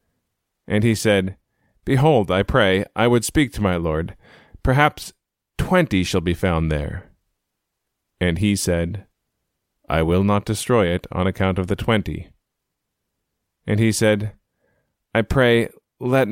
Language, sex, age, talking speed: English, male, 30-49, 135 wpm